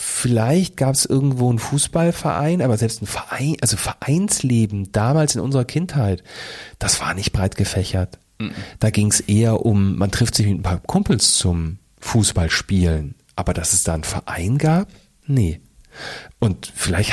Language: German